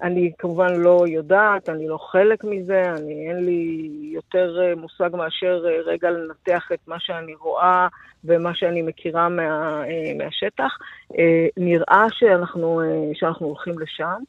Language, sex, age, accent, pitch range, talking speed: Hebrew, female, 50-69, native, 165-210 Hz, 145 wpm